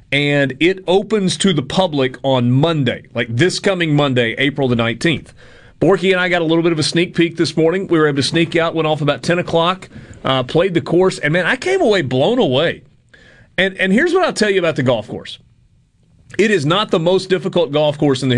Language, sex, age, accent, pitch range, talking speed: English, male, 40-59, American, 130-175 Hz, 230 wpm